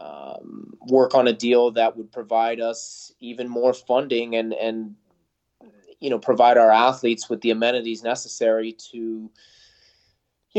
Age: 20-39